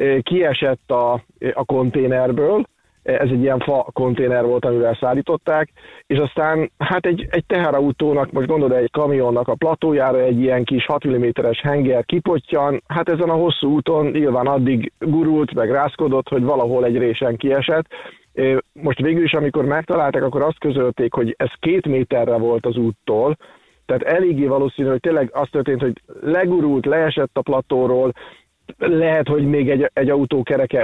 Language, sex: Hungarian, male